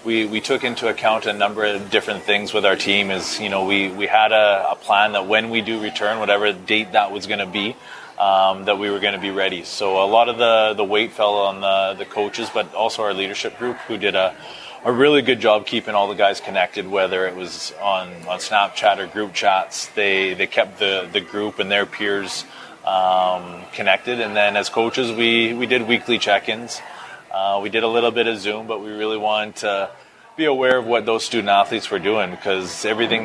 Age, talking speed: 20-39, 225 wpm